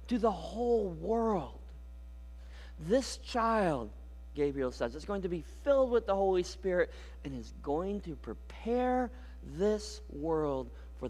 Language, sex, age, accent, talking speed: English, male, 40-59, American, 135 wpm